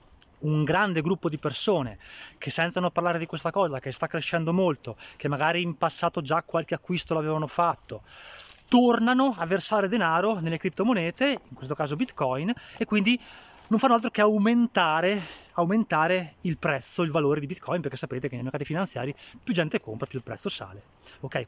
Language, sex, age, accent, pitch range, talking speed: Italian, male, 20-39, native, 145-195 Hz, 175 wpm